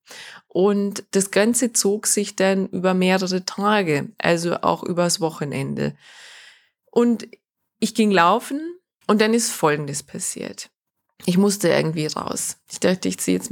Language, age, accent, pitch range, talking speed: German, 20-39, German, 170-220 Hz, 140 wpm